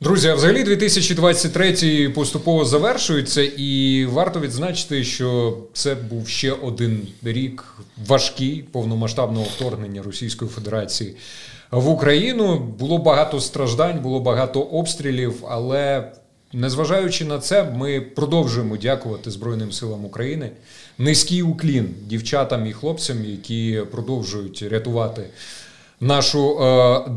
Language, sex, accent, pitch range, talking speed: Ukrainian, male, native, 115-145 Hz, 105 wpm